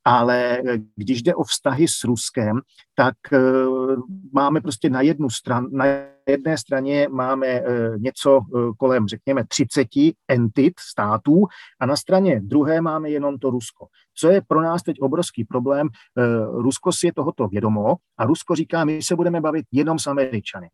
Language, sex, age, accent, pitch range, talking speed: Czech, male, 40-59, native, 115-145 Hz, 155 wpm